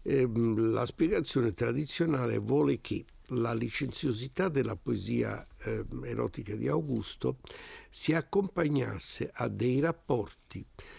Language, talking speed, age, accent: Italian, 95 wpm, 60-79, native